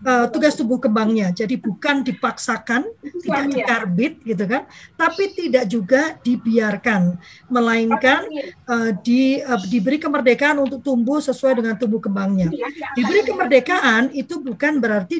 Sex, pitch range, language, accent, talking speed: female, 245-315 Hz, Indonesian, native, 120 wpm